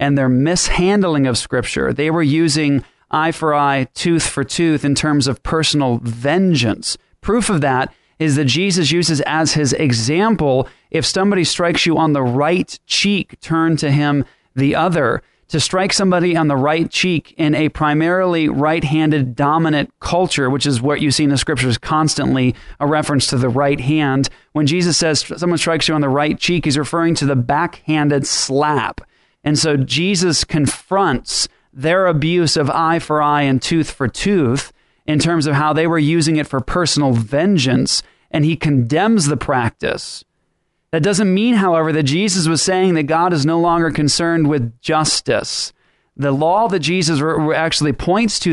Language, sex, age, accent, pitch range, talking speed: English, male, 30-49, American, 140-170 Hz, 170 wpm